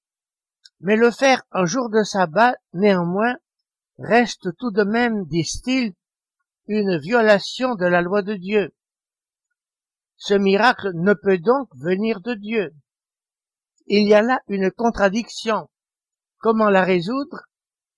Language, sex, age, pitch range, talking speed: French, male, 60-79, 175-230 Hz, 125 wpm